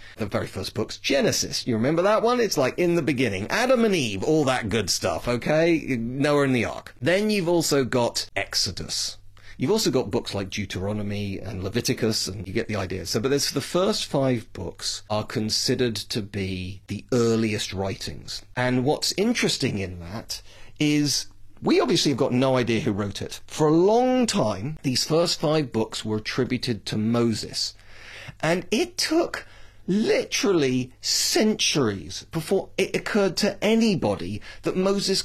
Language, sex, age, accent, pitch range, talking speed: English, male, 40-59, British, 105-175 Hz, 165 wpm